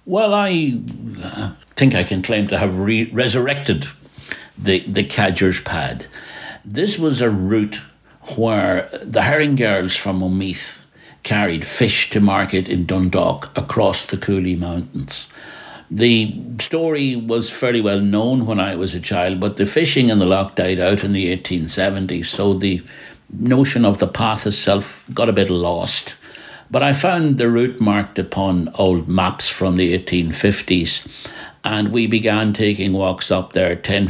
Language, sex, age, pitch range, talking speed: English, male, 60-79, 90-110 Hz, 155 wpm